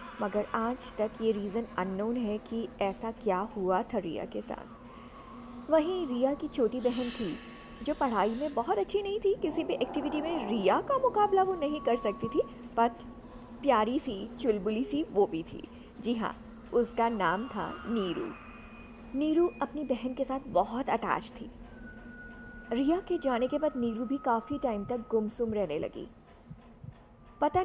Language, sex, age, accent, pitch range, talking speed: Hindi, female, 50-69, native, 235-315 Hz, 165 wpm